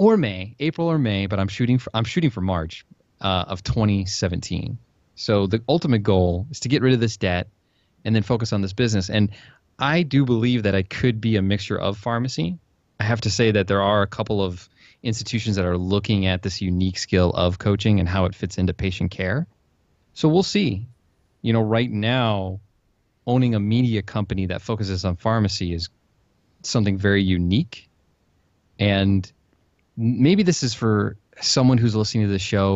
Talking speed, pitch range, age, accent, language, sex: 185 wpm, 95-115 Hz, 20-39, American, English, male